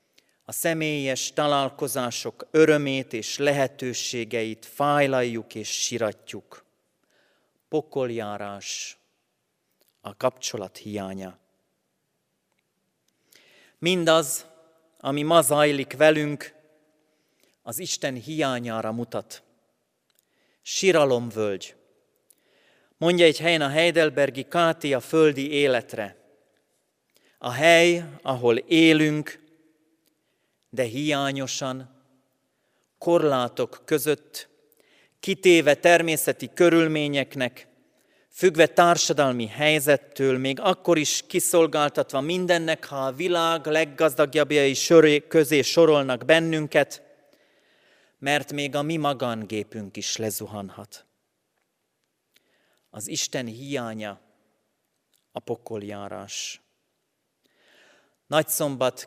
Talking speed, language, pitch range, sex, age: 75 wpm, Hungarian, 125-160 Hz, male, 40-59